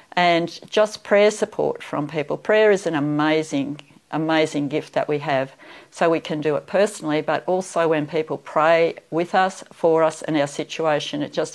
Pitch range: 150-175 Hz